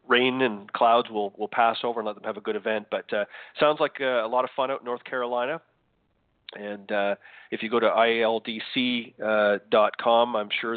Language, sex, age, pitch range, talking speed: English, male, 40-59, 105-115 Hz, 210 wpm